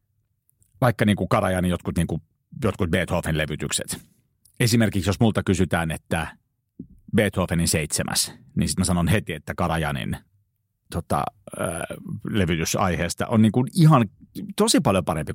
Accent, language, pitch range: native, Finnish, 90-115 Hz